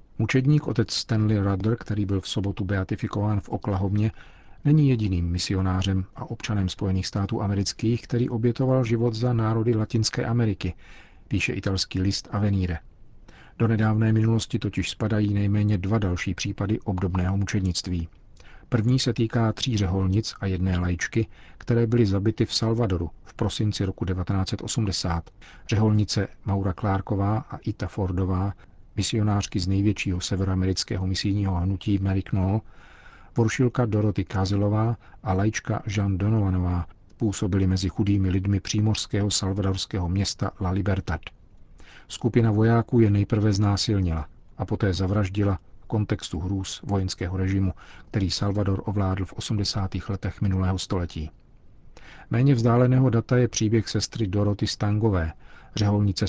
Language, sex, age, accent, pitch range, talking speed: Czech, male, 40-59, native, 95-110 Hz, 125 wpm